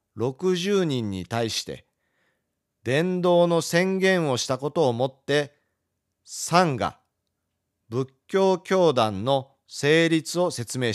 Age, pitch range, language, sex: 40-59, 115-170 Hz, Japanese, male